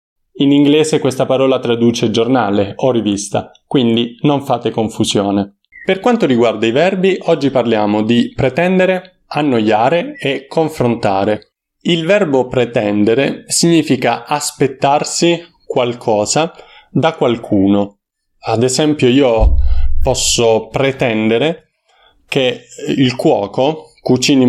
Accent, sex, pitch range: native, male, 110-135 Hz